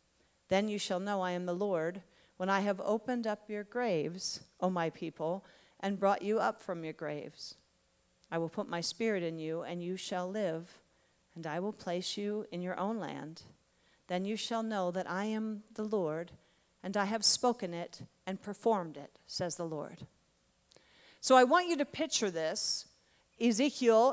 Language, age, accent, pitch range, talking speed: English, 40-59, American, 205-280 Hz, 180 wpm